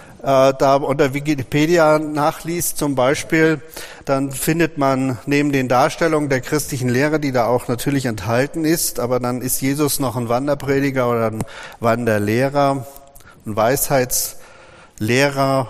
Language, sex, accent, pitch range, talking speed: German, male, German, 120-140 Hz, 125 wpm